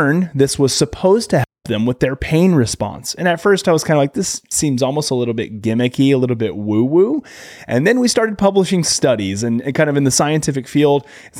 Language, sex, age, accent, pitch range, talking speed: English, male, 30-49, American, 115-150 Hz, 230 wpm